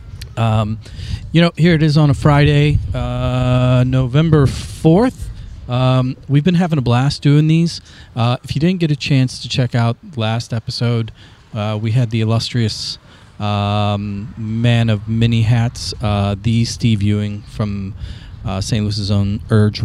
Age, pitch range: 30-49, 105-125 Hz